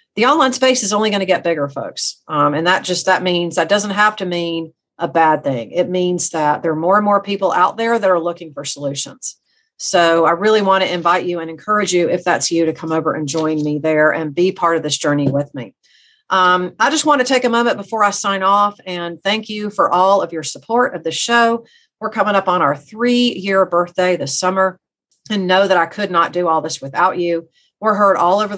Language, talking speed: English, 240 wpm